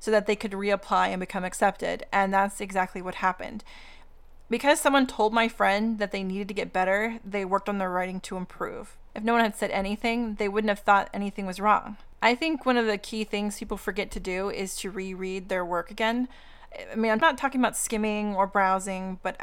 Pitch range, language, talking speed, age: 195-220 Hz, English, 220 wpm, 30-49